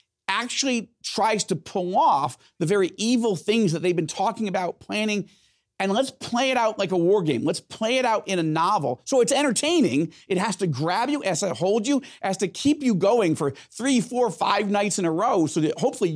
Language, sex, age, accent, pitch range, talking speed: English, male, 40-59, American, 155-235 Hz, 220 wpm